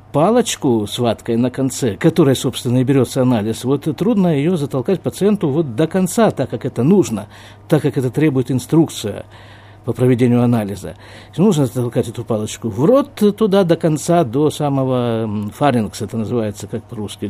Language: Russian